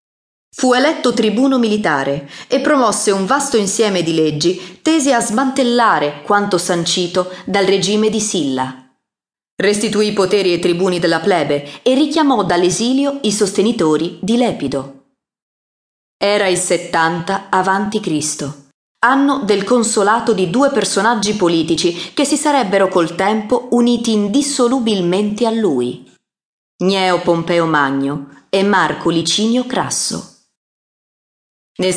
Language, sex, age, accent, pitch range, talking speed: Italian, female, 30-49, native, 165-235 Hz, 120 wpm